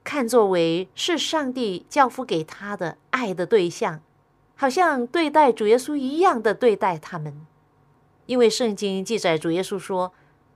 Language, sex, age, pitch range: Chinese, female, 50-69, 170-260 Hz